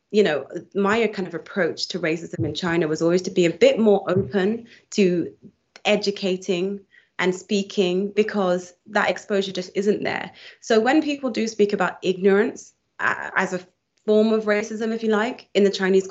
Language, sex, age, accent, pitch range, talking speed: English, female, 20-39, British, 180-210 Hz, 170 wpm